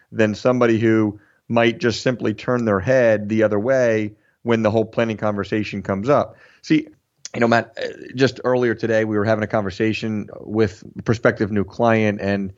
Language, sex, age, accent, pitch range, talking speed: English, male, 30-49, American, 105-115 Hz, 170 wpm